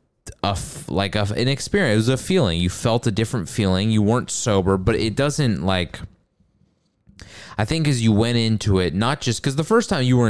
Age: 20-39